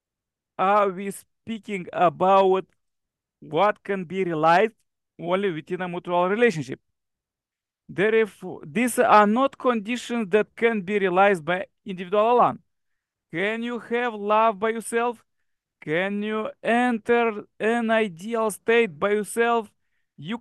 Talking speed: 120 wpm